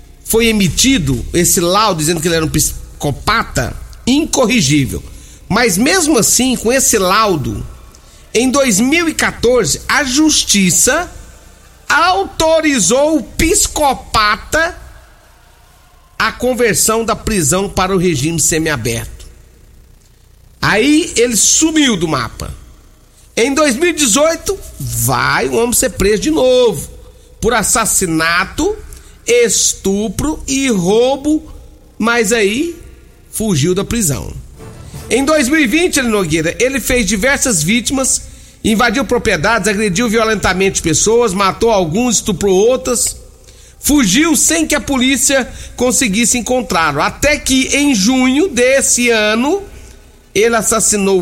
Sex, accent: male, Brazilian